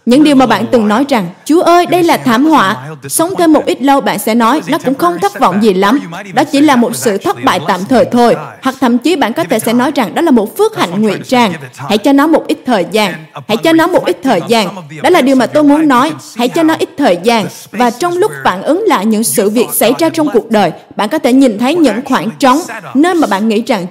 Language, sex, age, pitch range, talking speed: Vietnamese, female, 20-39, 195-280 Hz, 270 wpm